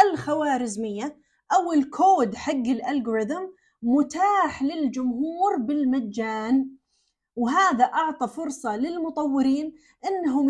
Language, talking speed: Arabic, 75 wpm